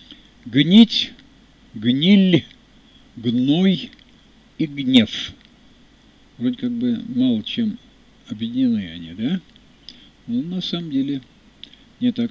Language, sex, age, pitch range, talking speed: Russian, male, 50-69, 170-245 Hz, 95 wpm